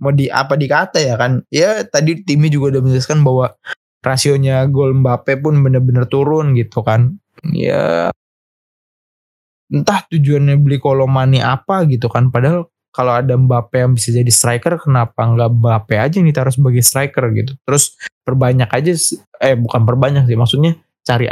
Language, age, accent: Indonesian, 20-39, native